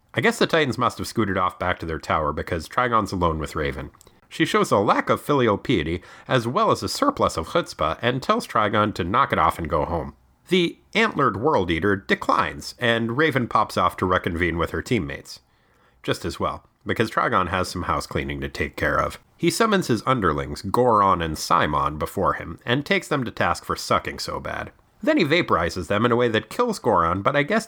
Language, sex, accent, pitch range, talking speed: English, male, American, 90-140 Hz, 215 wpm